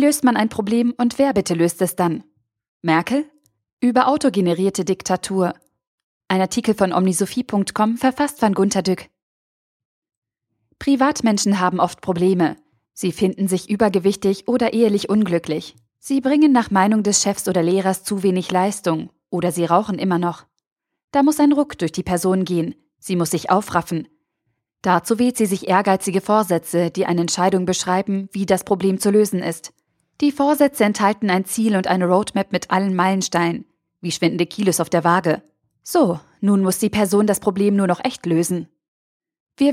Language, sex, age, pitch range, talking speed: German, female, 20-39, 175-210 Hz, 160 wpm